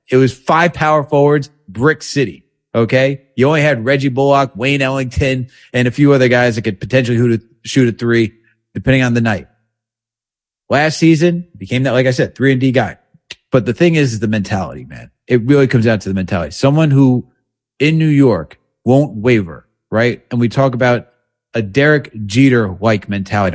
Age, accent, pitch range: 30-49, American, 115-140 Hz